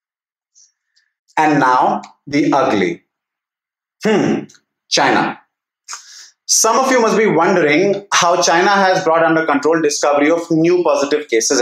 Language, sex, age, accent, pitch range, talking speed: English, male, 30-49, Indian, 160-220 Hz, 120 wpm